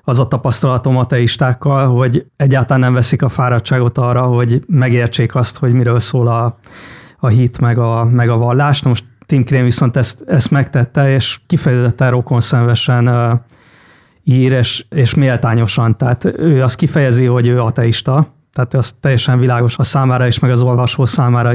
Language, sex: Hungarian, male